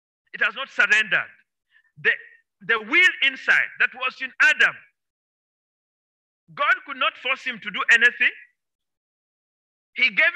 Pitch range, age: 210-330 Hz, 50-69